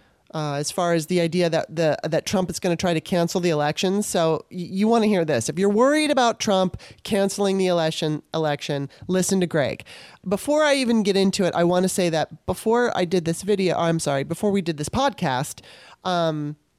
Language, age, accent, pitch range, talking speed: English, 30-49, American, 165-205 Hz, 220 wpm